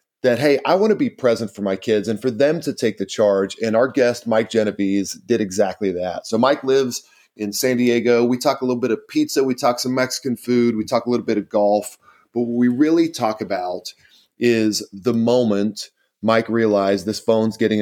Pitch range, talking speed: 100-125 Hz, 215 wpm